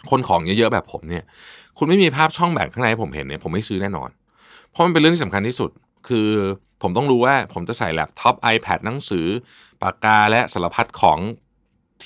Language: Thai